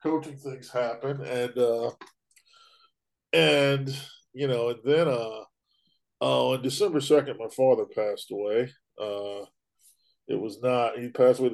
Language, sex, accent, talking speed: English, male, American, 140 wpm